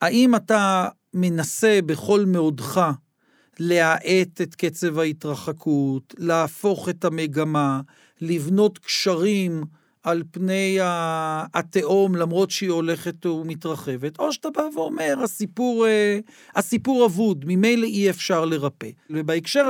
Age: 40-59